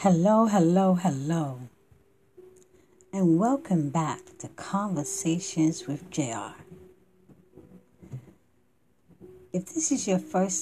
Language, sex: English, female